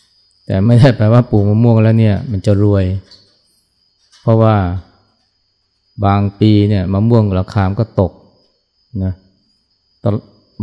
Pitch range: 100-110 Hz